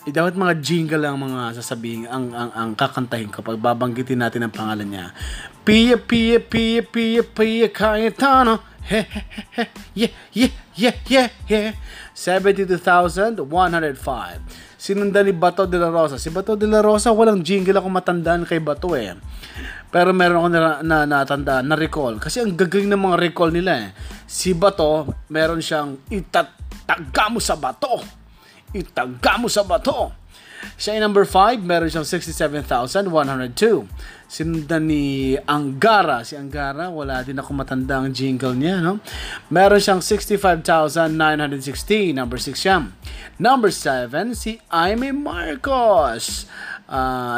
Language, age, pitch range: Filipino, 20-39, 135-195 Hz